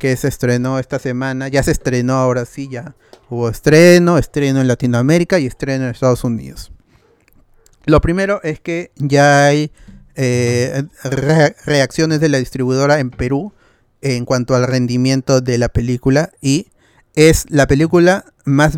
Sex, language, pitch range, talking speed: male, Spanish, 125-155 Hz, 145 wpm